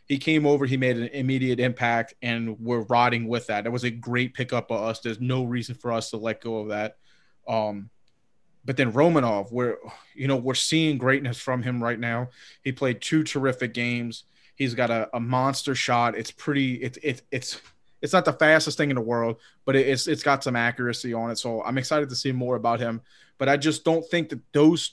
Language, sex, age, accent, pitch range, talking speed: English, male, 30-49, American, 120-145 Hz, 220 wpm